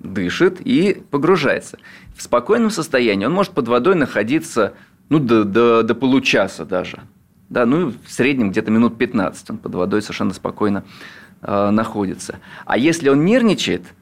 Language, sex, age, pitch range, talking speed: Russian, male, 30-49, 100-140 Hz, 155 wpm